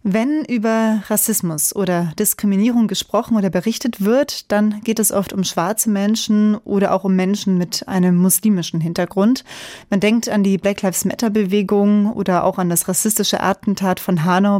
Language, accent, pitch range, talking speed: German, German, 185-220 Hz, 165 wpm